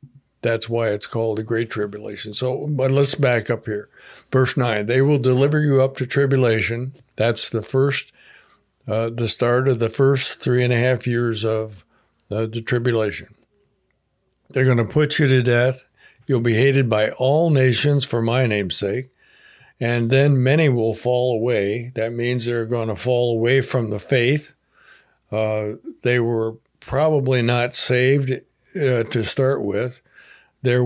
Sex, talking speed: male, 165 wpm